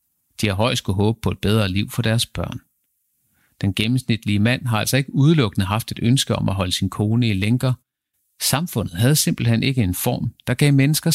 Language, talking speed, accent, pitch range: Danish, 205 wpm, native, 105-130 Hz